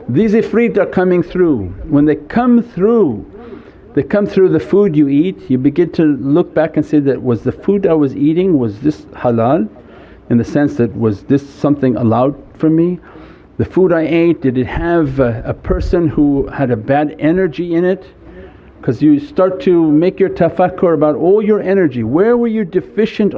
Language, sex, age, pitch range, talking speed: English, male, 50-69, 135-190 Hz, 190 wpm